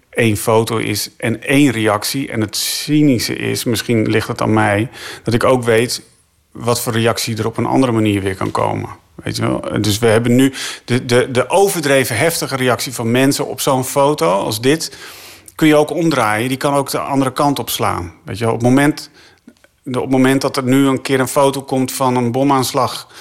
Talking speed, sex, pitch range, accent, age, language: 200 wpm, male, 120-140 Hz, Dutch, 40-59, Dutch